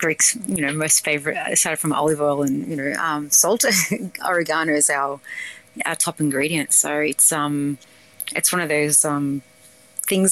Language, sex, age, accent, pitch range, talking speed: English, female, 30-49, Australian, 145-165 Hz, 170 wpm